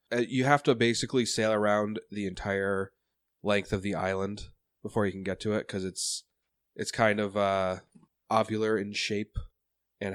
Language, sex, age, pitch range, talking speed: English, male, 20-39, 95-115 Hz, 165 wpm